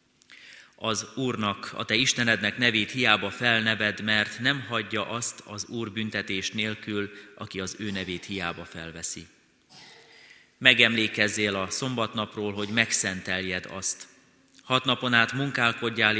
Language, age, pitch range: Hungarian, 30-49, 95-115 Hz